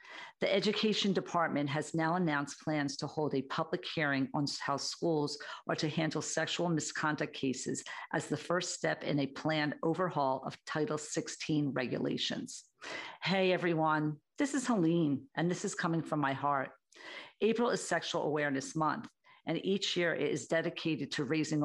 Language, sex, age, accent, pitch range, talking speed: English, female, 50-69, American, 145-165 Hz, 160 wpm